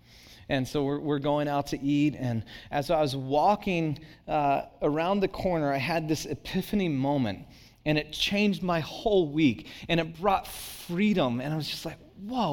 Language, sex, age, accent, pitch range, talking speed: English, male, 30-49, American, 145-200 Hz, 180 wpm